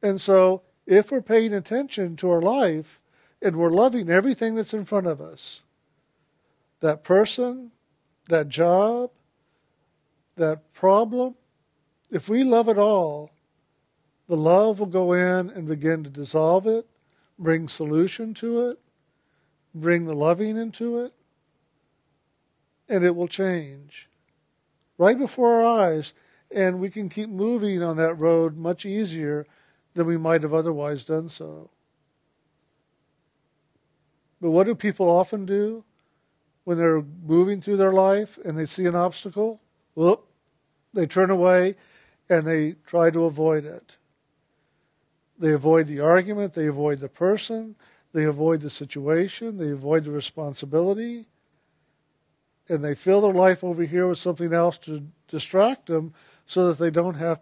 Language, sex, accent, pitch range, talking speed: English, male, American, 155-200 Hz, 140 wpm